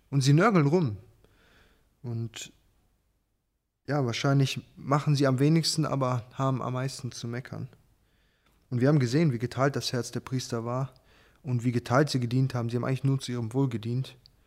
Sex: male